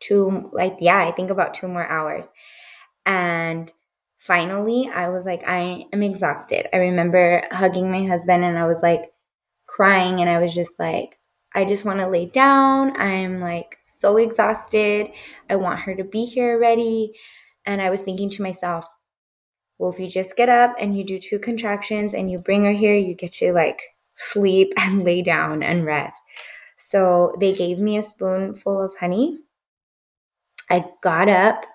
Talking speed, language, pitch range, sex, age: 175 wpm, English, 175-200 Hz, female, 20-39